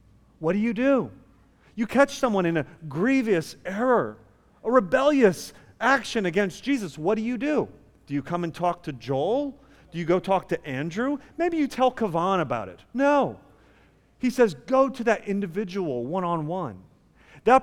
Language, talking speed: English, 165 wpm